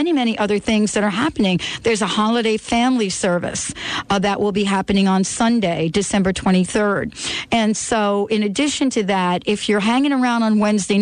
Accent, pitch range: American, 200-240 Hz